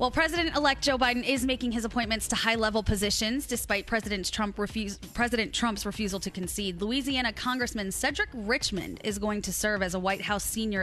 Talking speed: 195 wpm